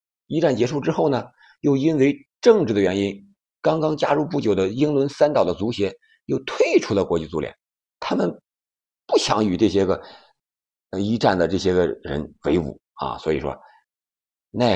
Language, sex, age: Chinese, male, 50-69